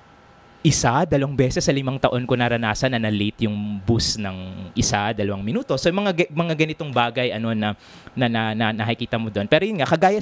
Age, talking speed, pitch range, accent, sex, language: 20-39, 180 wpm, 105-135 Hz, native, male, Filipino